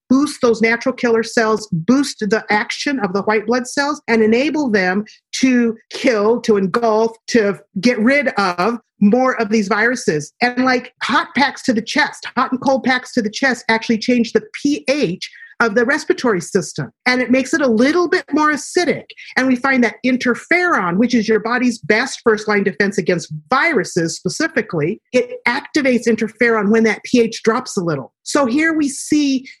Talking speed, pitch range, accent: 180 wpm, 210-265 Hz, American